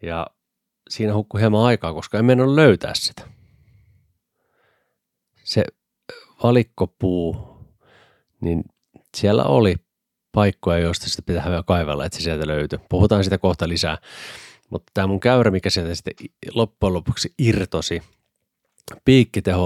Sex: male